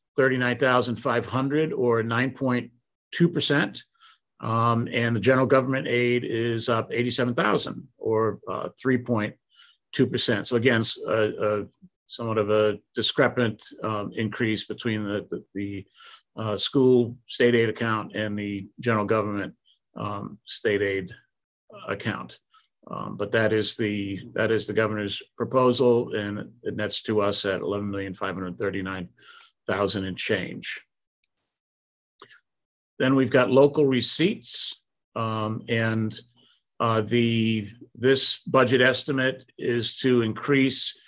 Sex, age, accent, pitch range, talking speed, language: male, 50-69, American, 110-125 Hz, 110 wpm, English